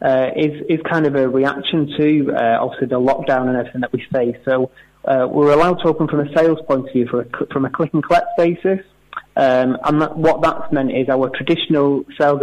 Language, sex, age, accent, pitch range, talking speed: English, male, 30-49, British, 130-150 Hz, 225 wpm